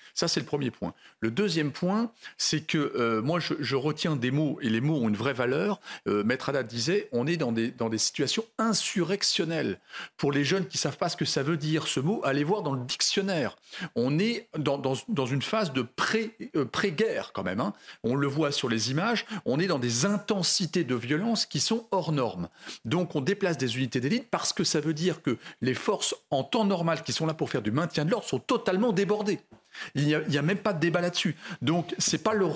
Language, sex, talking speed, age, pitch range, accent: French, male, 240 wpm, 40-59, 140-200 Hz, French